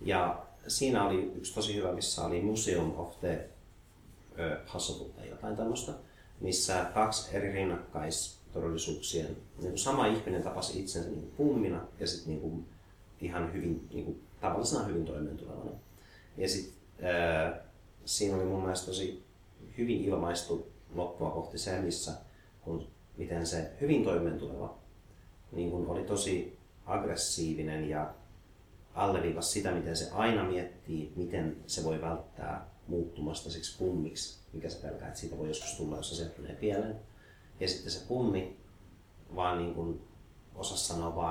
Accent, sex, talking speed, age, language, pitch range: native, male, 135 wpm, 30-49, Finnish, 85-100 Hz